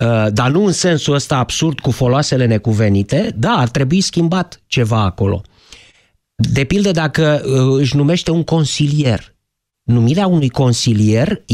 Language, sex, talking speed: Romanian, male, 130 wpm